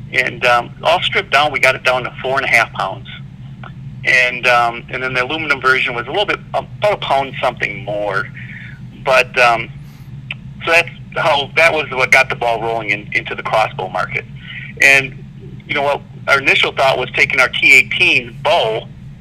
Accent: American